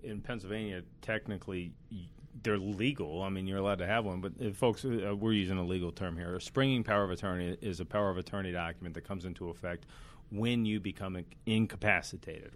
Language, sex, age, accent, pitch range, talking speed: English, male, 40-59, American, 95-120 Hz, 195 wpm